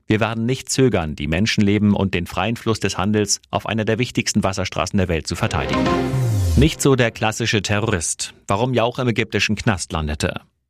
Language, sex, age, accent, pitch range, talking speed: German, male, 40-59, German, 95-115 Hz, 180 wpm